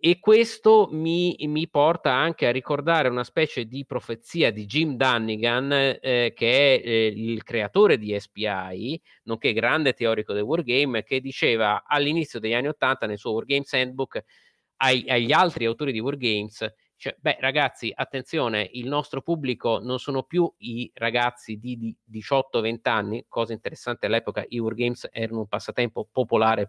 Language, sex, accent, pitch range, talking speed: Italian, male, native, 115-145 Hz, 155 wpm